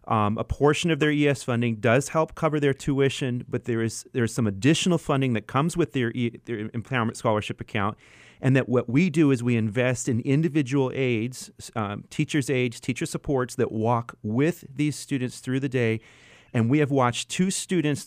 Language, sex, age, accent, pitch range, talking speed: English, male, 30-49, American, 115-150 Hz, 195 wpm